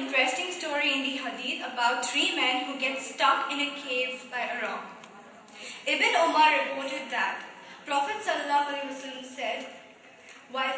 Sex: female